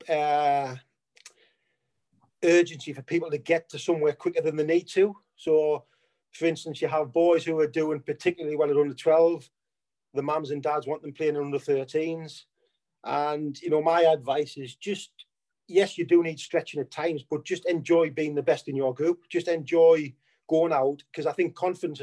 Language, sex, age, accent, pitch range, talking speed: English, male, 30-49, British, 150-175 Hz, 185 wpm